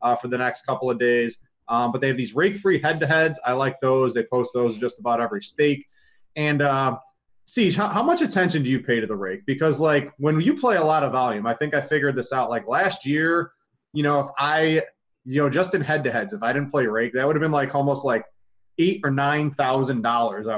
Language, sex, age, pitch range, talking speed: English, male, 20-39, 120-155 Hz, 245 wpm